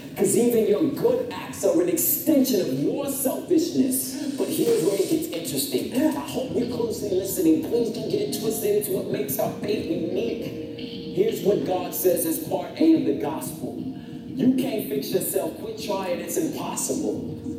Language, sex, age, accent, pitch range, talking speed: English, male, 40-59, American, 215-315 Hz, 170 wpm